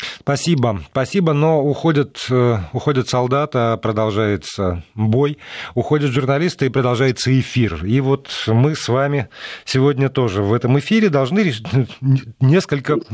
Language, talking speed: Russian, 115 wpm